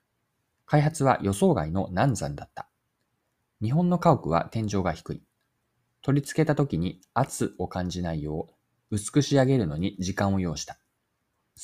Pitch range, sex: 90-135 Hz, male